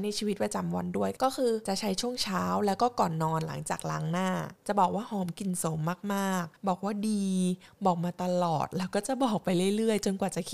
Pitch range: 180-225 Hz